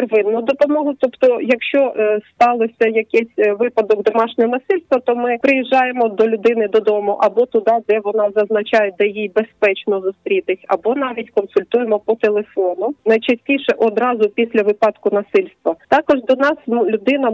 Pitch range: 205-245 Hz